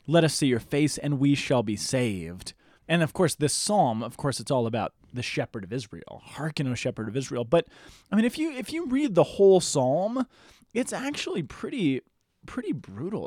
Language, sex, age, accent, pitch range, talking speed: English, male, 20-39, American, 125-165 Hz, 205 wpm